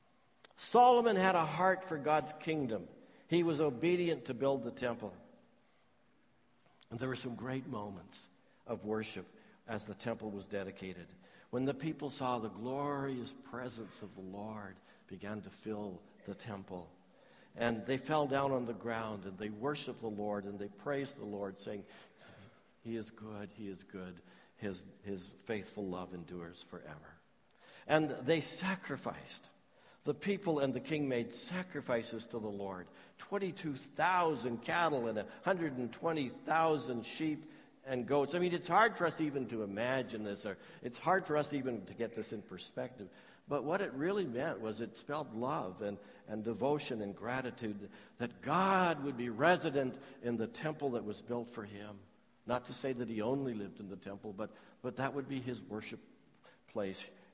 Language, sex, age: English, male, 60-79